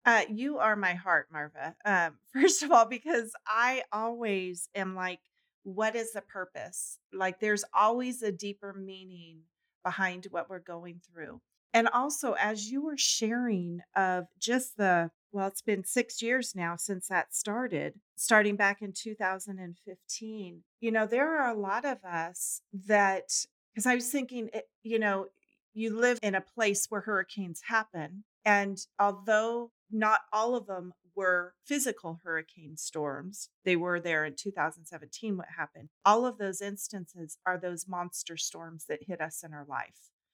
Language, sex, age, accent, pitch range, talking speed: English, female, 40-59, American, 170-215 Hz, 160 wpm